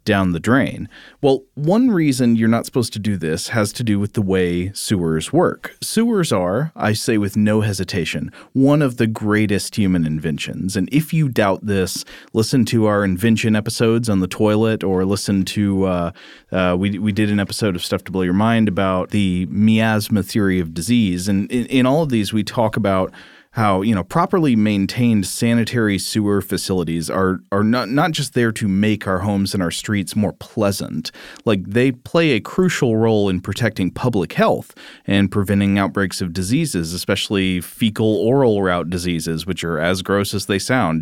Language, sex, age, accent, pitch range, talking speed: English, male, 30-49, American, 95-115 Hz, 185 wpm